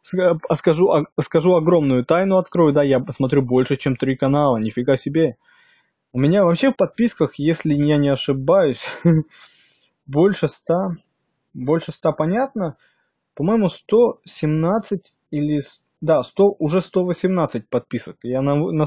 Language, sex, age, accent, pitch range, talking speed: Russian, male, 20-39, native, 130-185 Hz, 120 wpm